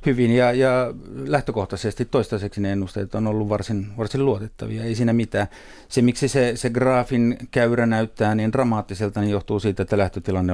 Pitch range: 95-110 Hz